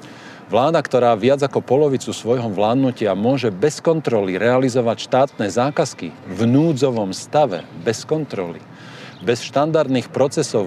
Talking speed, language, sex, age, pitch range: 120 wpm, Slovak, male, 40-59, 105-135 Hz